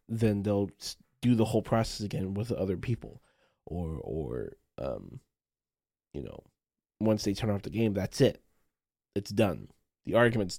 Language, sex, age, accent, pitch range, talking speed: English, male, 20-39, American, 110-175 Hz, 155 wpm